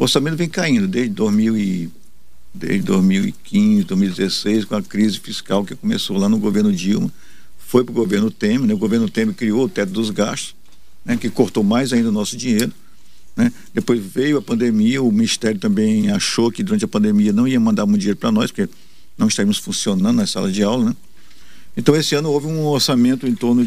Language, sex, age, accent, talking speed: Portuguese, male, 50-69, Brazilian, 195 wpm